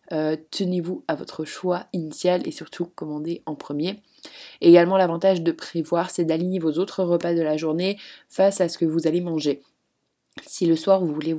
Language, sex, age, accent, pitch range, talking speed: French, female, 20-39, French, 160-190 Hz, 185 wpm